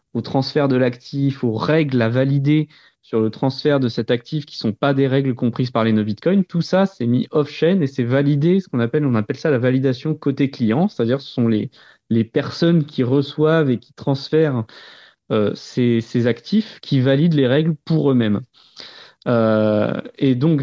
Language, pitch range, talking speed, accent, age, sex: French, 115-145 Hz, 195 wpm, French, 30-49, male